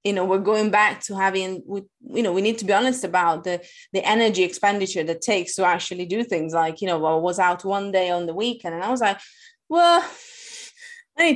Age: 20-39